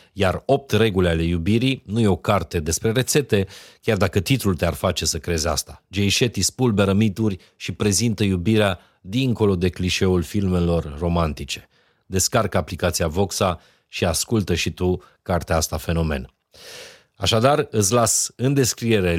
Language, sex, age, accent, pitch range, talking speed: Romanian, male, 40-59, native, 85-110 Hz, 145 wpm